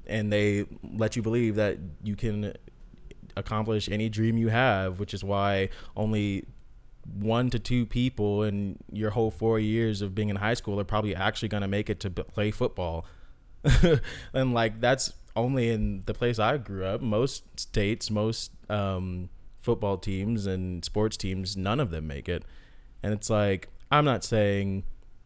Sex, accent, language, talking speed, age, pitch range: male, American, English, 170 wpm, 20-39, 95-115 Hz